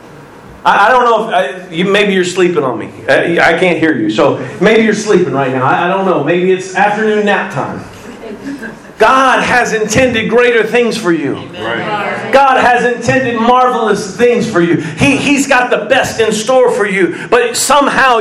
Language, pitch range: English, 195-250 Hz